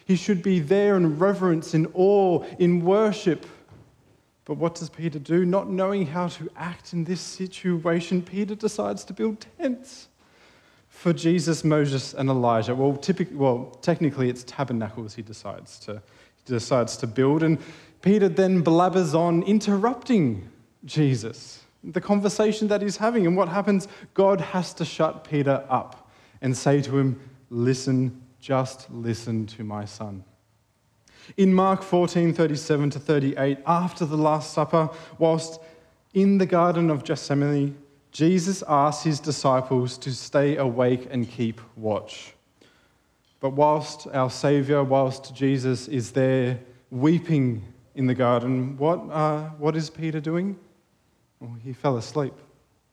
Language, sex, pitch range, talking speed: English, male, 130-175 Hz, 140 wpm